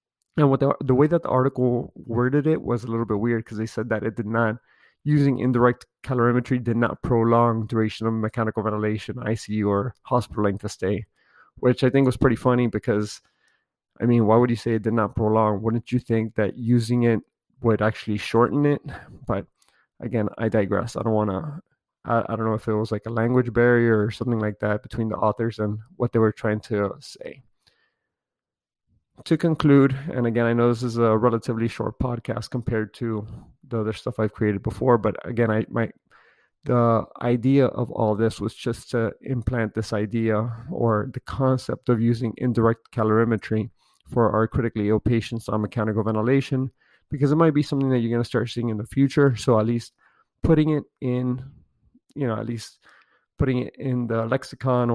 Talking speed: 190 wpm